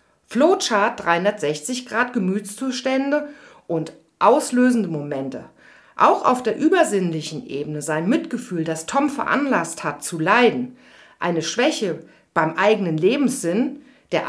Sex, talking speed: female, 105 wpm